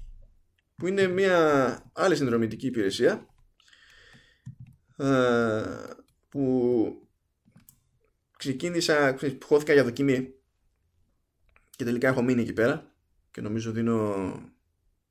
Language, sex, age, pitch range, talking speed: Greek, male, 20-39, 105-140 Hz, 120 wpm